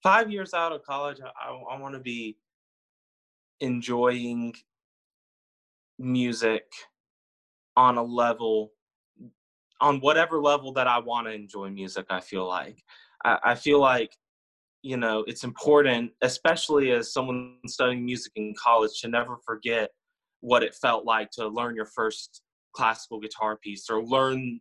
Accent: American